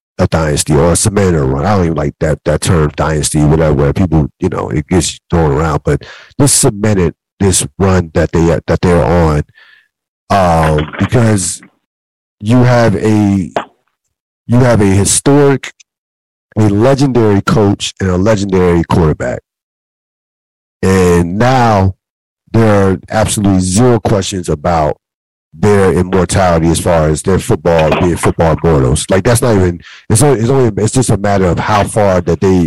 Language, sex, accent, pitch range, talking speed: English, male, American, 85-110 Hz, 155 wpm